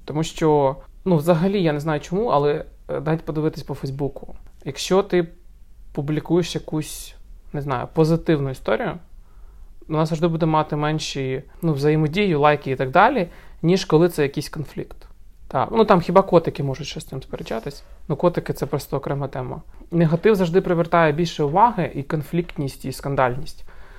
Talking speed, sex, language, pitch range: 160 wpm, male, Ukrainian, 145-180 Hz